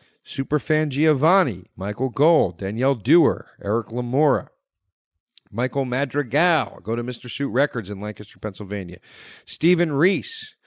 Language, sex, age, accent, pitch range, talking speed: English, male, 50-69, American, 105-140 Hz, 110 wpm